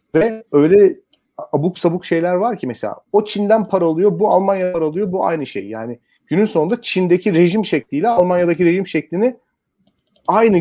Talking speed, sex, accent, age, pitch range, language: 165 wpm, male, native, 40-59, 135-185 Hz, Turkish